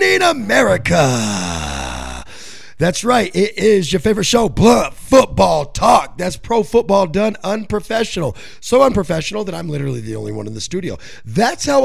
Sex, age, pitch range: male, 30-49, 120-205 Hz